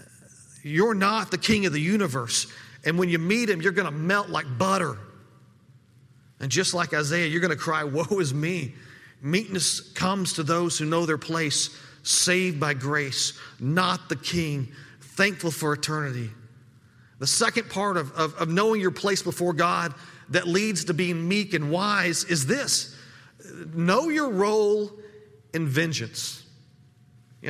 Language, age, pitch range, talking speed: English, 40-59, 135-190 Hz, 155 wpm